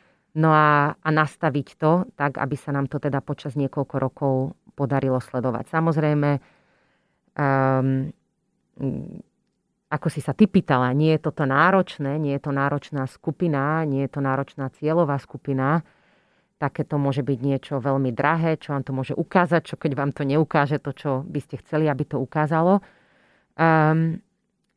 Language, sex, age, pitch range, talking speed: Slovak, female, 30-49, 140-160 Hz, 155 wpm